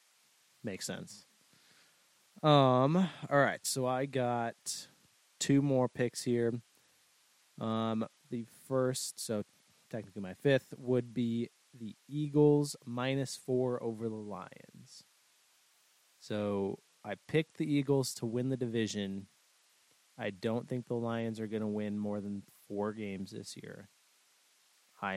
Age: 20-39